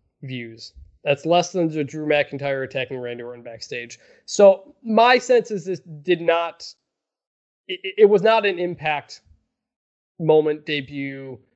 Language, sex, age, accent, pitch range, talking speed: English, male, 20-39, American, 140-195 Hz, 135 wpm